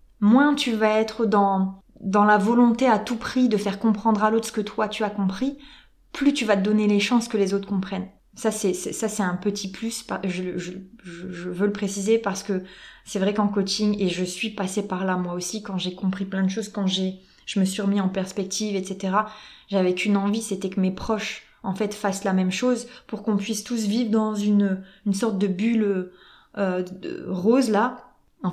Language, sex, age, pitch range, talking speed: French, female, 20-39, 195-225 Hz, 220 wpm